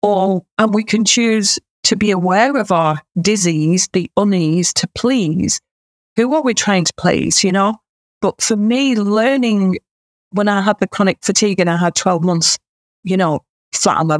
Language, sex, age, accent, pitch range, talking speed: English, female, 40-59, British, 175-220 Hz, 180 wpm